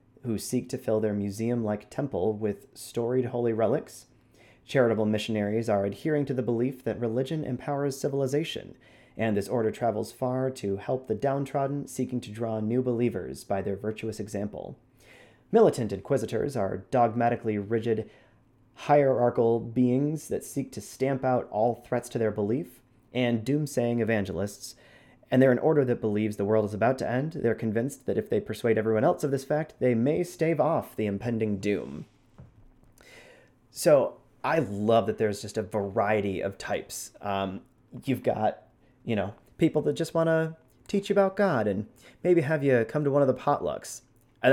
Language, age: English, 30-49